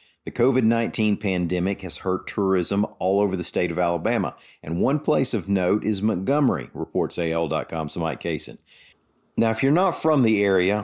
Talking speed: 165 wpm